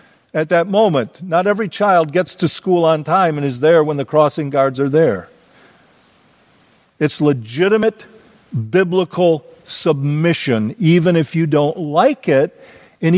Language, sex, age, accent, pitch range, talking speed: English, male, 50-69, American, 145-180 Hz, 140 wpm